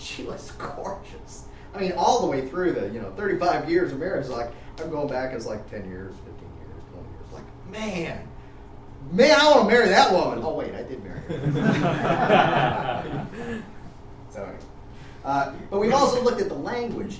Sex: male